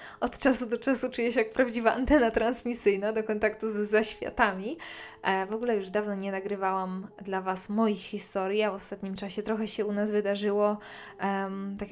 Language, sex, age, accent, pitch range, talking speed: Polish, female, 20-39, native, 200-230 Hz, 170 wpm